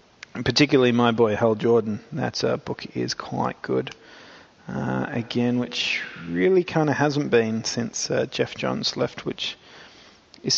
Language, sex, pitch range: English, male, 115-130 Hz